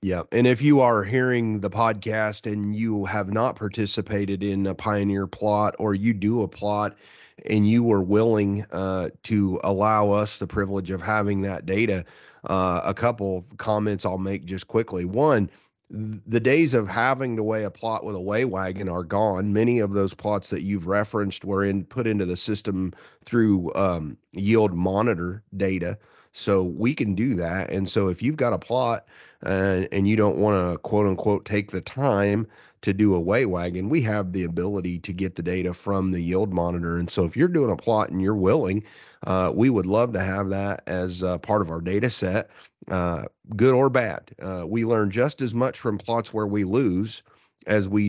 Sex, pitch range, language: male, 95-110 Hz, English